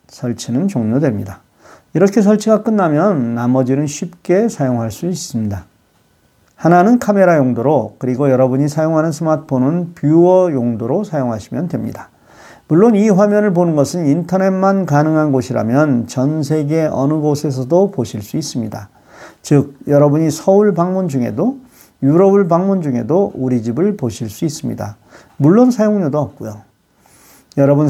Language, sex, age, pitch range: Korean, male, 40-59, 125-180 Hz